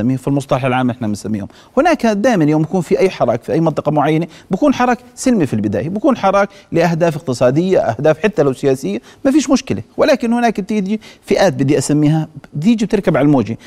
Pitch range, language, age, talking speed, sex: 135-190 Hz, Arabic, 40-59, 185 wpm, male